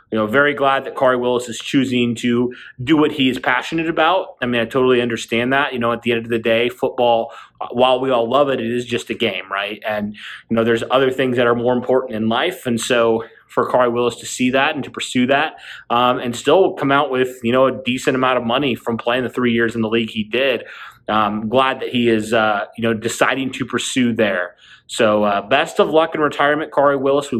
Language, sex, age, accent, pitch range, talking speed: English, male, 30-49, American, 115-135 Hz, 245 wpm